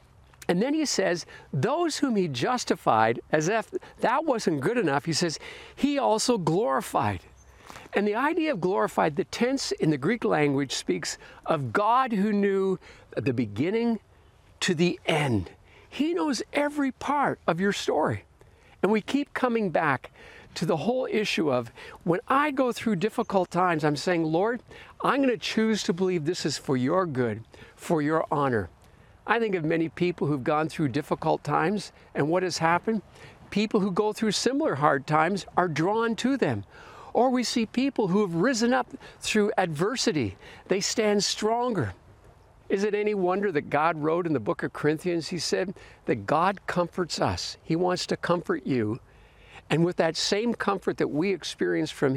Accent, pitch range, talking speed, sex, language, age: American, 150-225 Hz, 170 wpm, male, English, 60-79